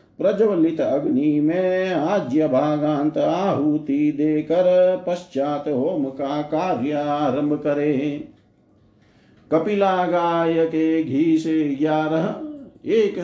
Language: Hindi